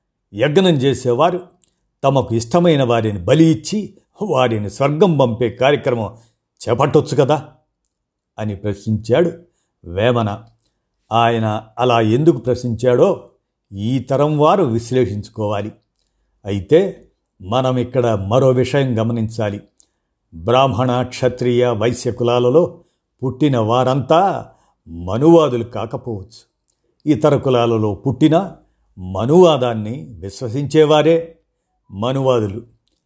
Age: 50-69